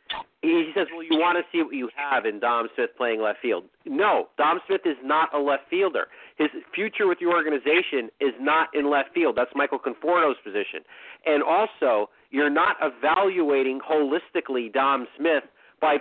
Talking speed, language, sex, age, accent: 175 wpm, English, male, 40-59, American